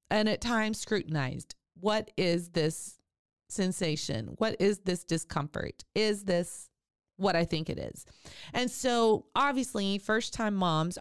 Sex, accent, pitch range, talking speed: female, American, 160-215 Hz, 130 wpm